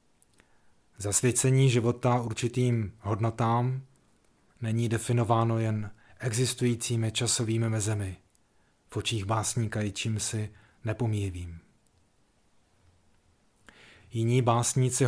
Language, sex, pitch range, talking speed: Czech, male, 110-120 Hz, 70 wpm